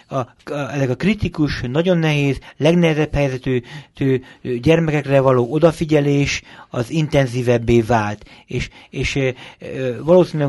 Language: Hungarian